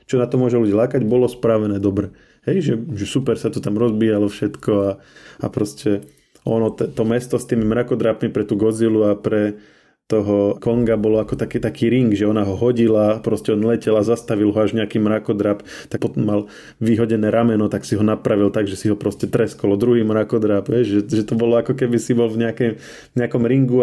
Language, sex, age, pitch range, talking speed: Slovak, male, 20-39, 105-120 Hz, 205 wpm